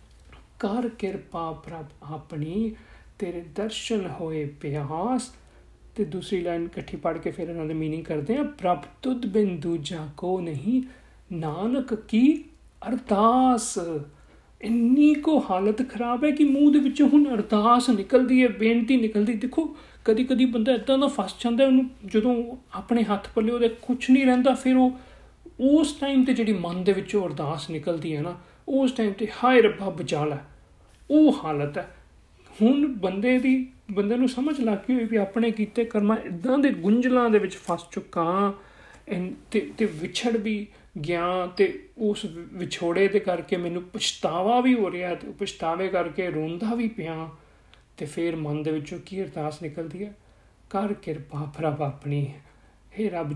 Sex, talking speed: male, 125 wpm